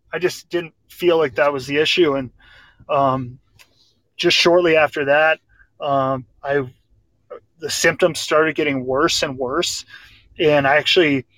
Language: English